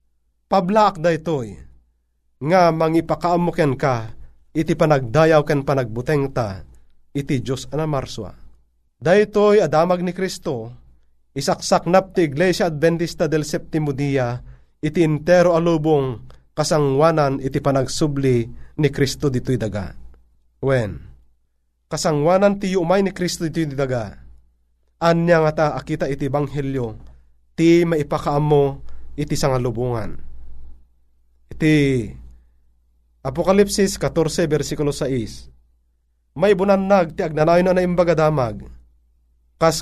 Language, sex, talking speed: Filipino, male, 95 wpm